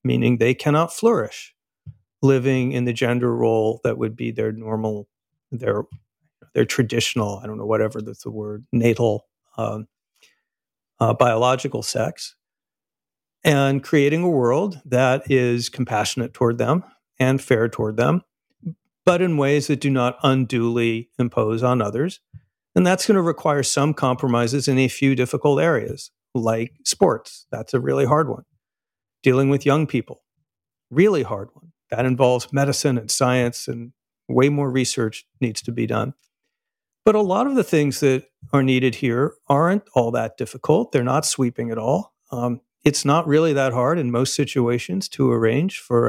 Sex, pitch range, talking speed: male, 120-150 Hz, 160 wpm